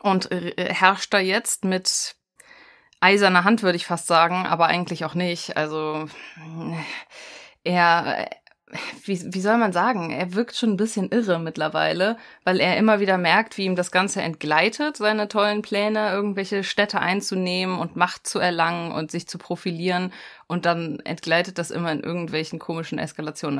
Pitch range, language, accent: 165-205 Hz, German, German